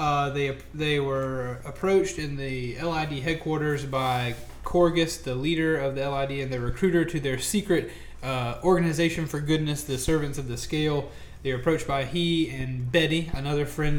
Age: 30-49